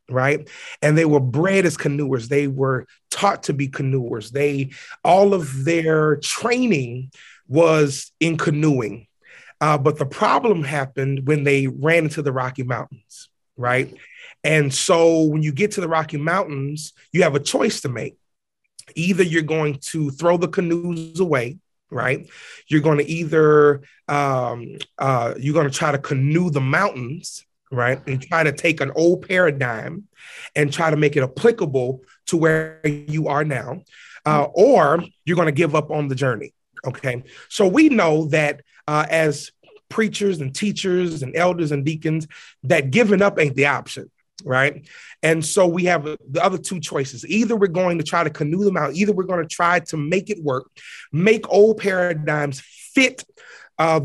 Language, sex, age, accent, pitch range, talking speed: English, male, 30-49, American, 140-175 Hz, 170 wpm